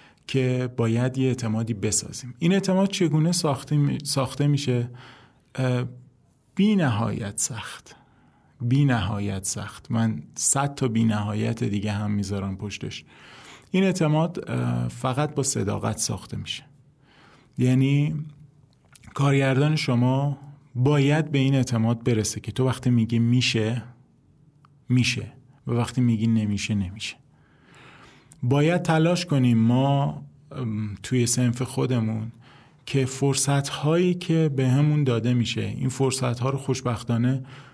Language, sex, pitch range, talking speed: Persian, male, 115-140 Hz, 115 wpm